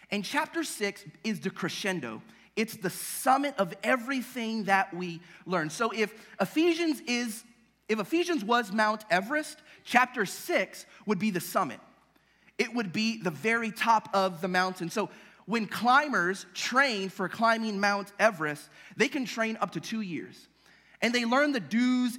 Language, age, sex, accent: English, 30-49, male, American